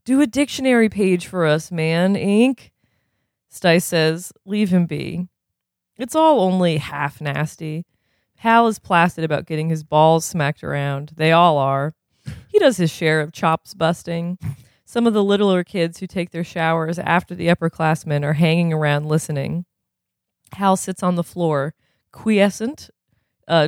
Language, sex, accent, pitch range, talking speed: English, female, American, 155-190 Hz, 150 wpm